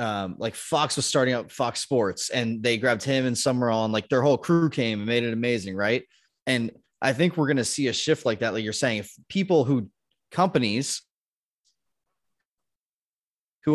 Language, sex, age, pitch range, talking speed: English, male, 30-49, 105-140 Hz, 190 wpm